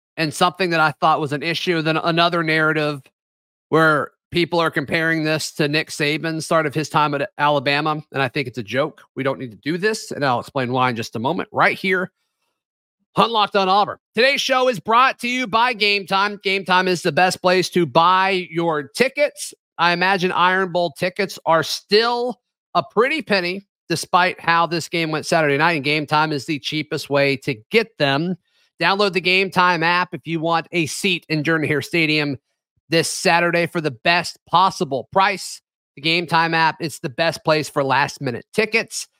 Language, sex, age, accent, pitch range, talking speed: English, male, 30-49, American, 150-185 Hz, 195 wpm